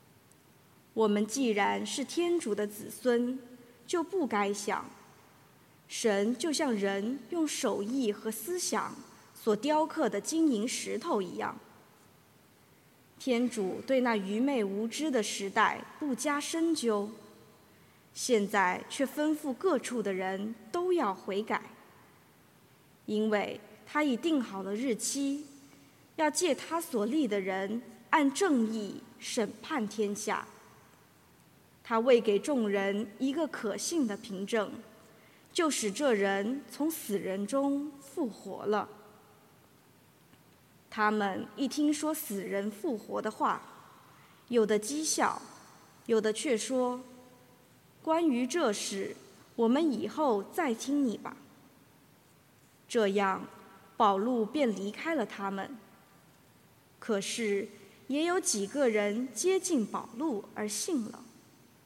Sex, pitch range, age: female, 205-280 Hz, 20-39